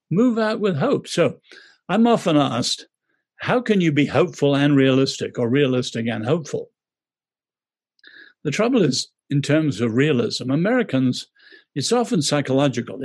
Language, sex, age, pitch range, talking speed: English, male, 60-79, 130-215 Hz, 140 wpm